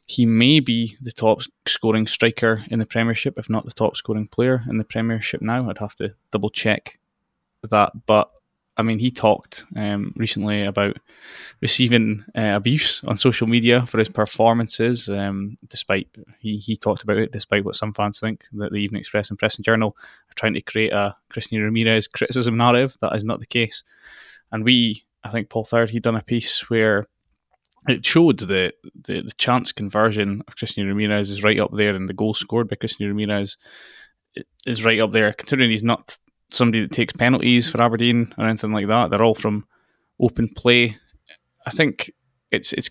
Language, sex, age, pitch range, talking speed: English, male, 20-39, 105-120 Hz, 190 wpm